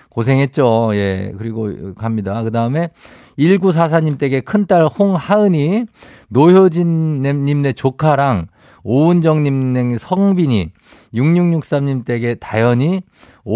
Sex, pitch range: male, 115-160 Hz